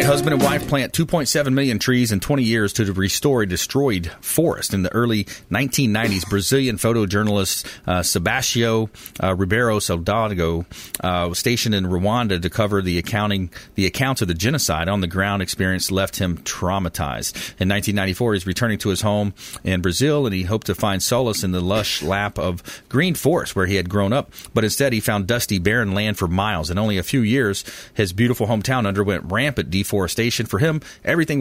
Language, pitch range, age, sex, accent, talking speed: English, 95-115 Hz, 40-59, male, American, 185 wpm